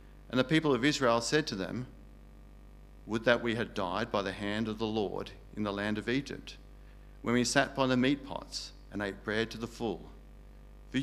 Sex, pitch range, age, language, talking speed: male, 75-120 Hz, 50-69, English, 205 wpm